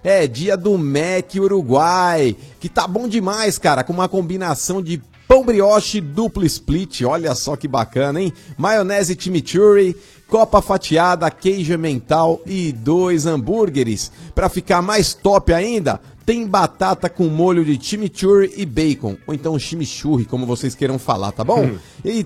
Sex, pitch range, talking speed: male, 160-220 Hz, 150 wpm